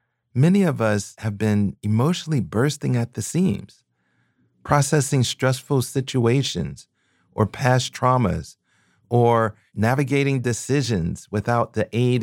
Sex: male